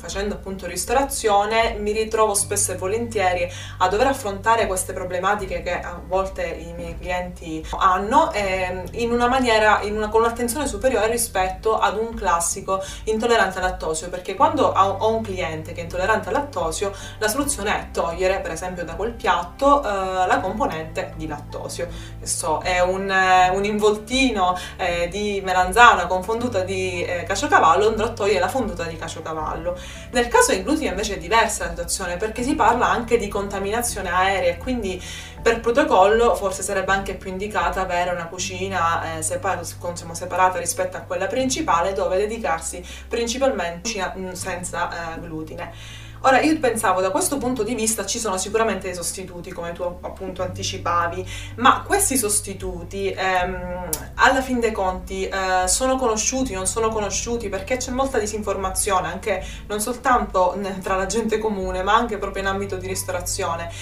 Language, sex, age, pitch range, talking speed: Italian, female, 20-39, 180-225 Hz, 165 wpm